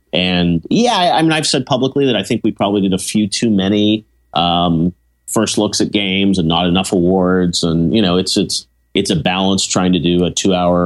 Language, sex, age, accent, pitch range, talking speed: English, male, 30-49, American, 80-95 Hz, 220 wpm